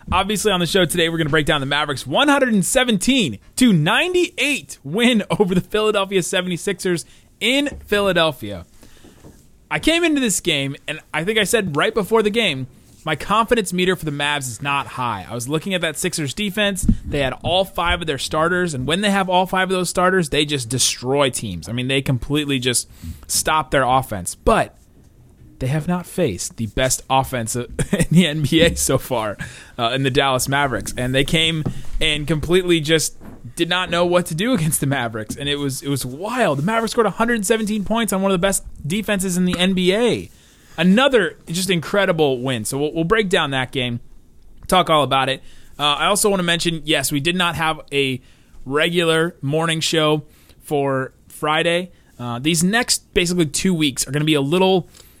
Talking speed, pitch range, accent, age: 190 wpm, 135-190 Hz, American, 30-49